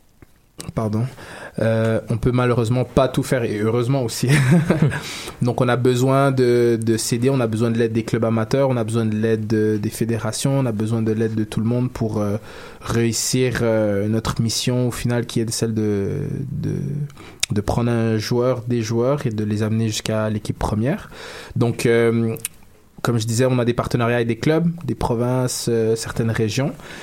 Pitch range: 110-130 Hz